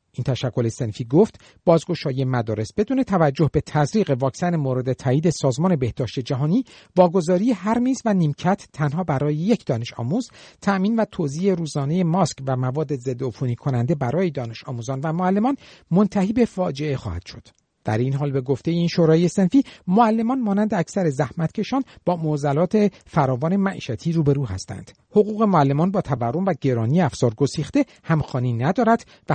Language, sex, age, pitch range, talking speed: Persian, male, 50-69, 135-195 Hz, 150 wpm